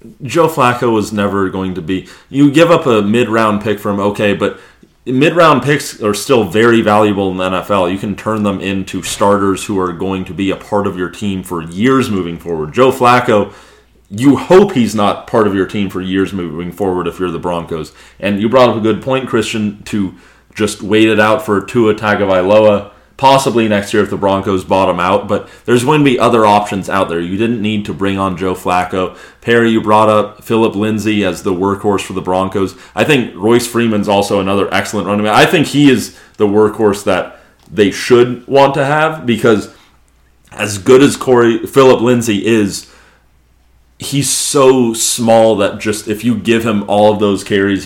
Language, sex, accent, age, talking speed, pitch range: English, male, American, 30-49, 200 wpm, 95-115 Hz